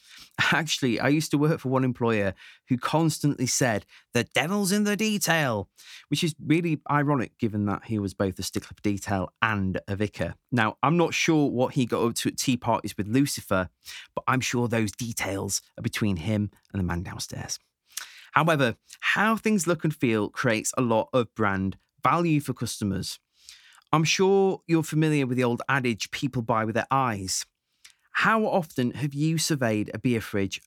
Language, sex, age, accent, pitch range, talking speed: English, male, 30-49, British, 105-150 Hz, 180 wpm